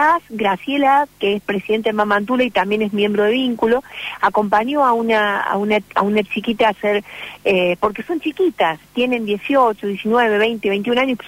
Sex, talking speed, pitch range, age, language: female, 170 wpm, 185-245 Hz, 40-59, Spanish